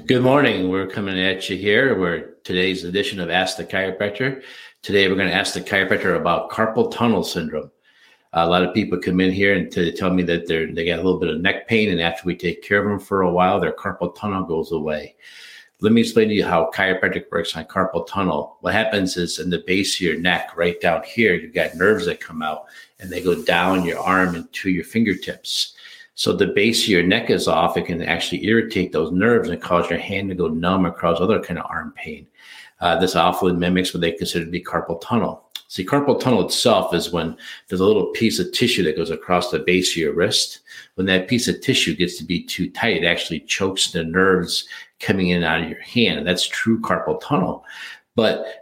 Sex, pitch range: male, 85-100 Hz